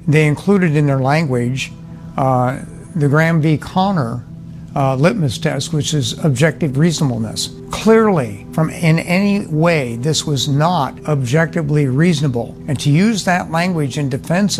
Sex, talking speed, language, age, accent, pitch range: male, 140 wpm, English, 60-79, American, 130-165 Hz